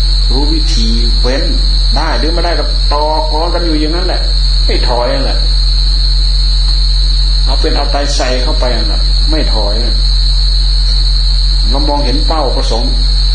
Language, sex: Thai, male